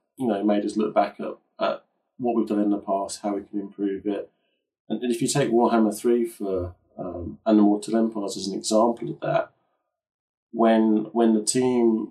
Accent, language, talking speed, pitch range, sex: British, English, 200 wpm, 100-115 Hz, male